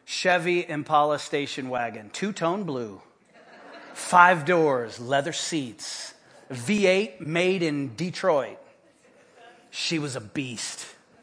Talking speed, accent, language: 95 wpm, American, English